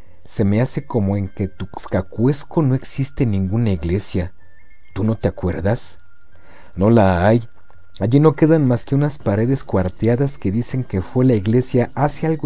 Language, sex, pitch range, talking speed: Spanish, male, 95-135 Hz, 170 wpm